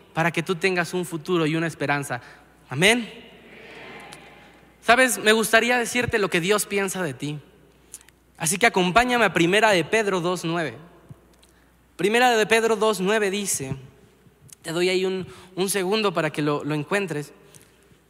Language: Spanish